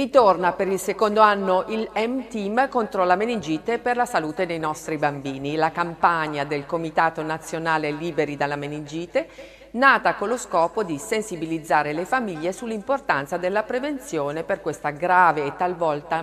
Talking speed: 150 wpm